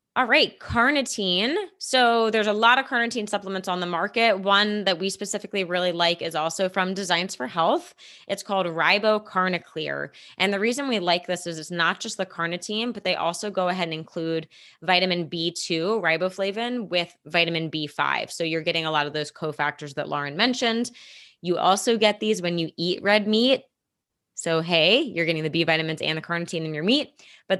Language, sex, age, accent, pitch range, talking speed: English, female, 20-39, American, 165-210 Hz, 190 wpm